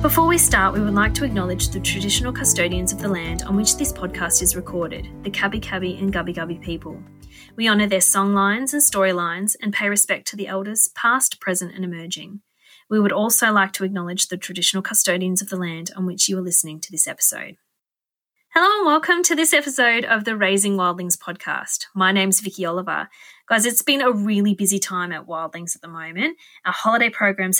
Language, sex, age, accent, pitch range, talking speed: English, female, 20-39, Australian, 190-255 Hz, 205 wpm